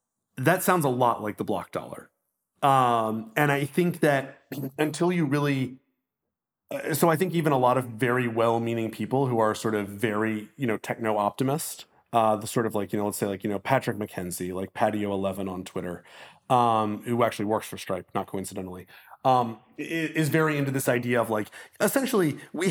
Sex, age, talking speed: male, 30-49, 190 wpm